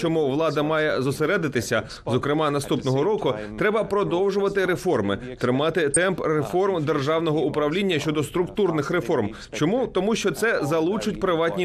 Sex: male